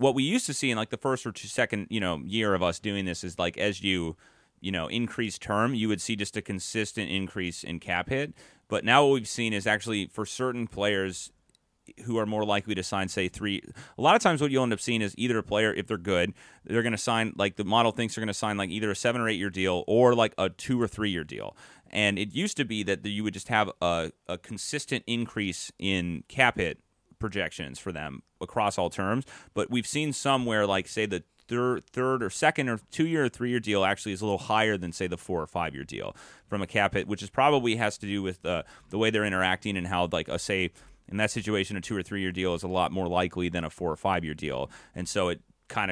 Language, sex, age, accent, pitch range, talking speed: English, male, 30-49, American, 95-120 Hz, 250 wpm